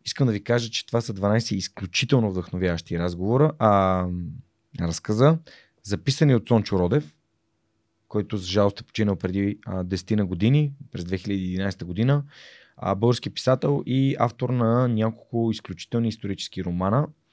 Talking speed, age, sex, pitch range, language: 130 wpm, 30-49, male, 100-130 Hz, Bulgarian